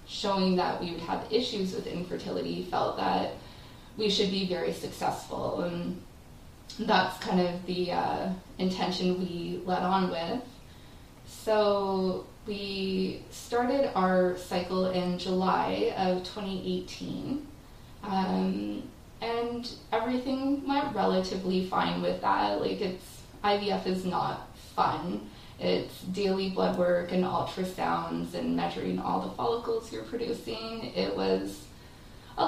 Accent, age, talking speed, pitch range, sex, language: American, 20-39, 120 wpm, 125-210 Hz, female, English